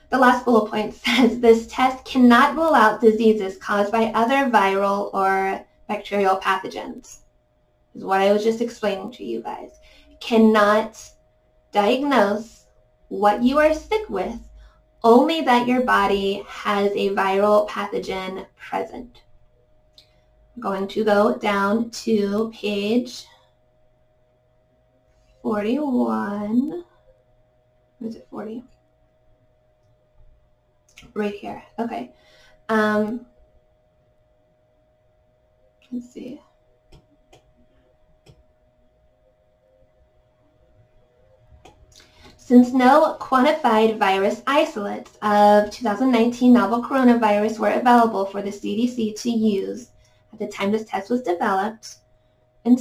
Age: 20-39